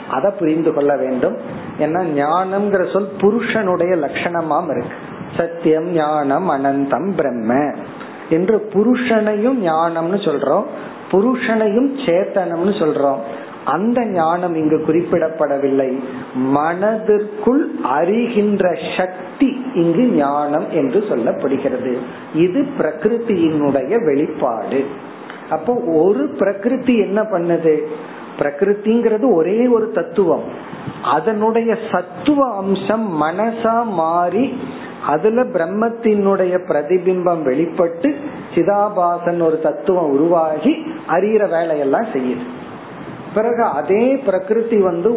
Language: Tamil